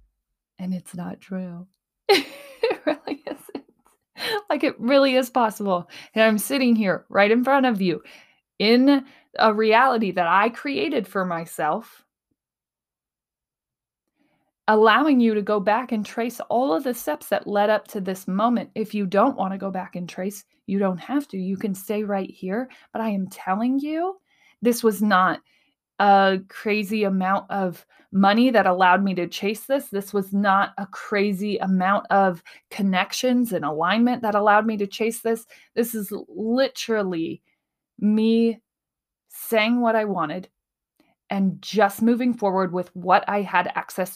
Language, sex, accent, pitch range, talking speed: English, female, American, 190-240 Hz, 160 wpm